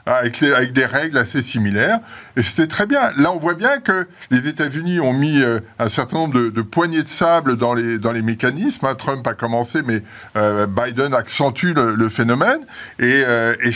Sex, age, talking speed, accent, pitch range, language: male, 60-79, 190 wpm, French, 120-170 Hz, French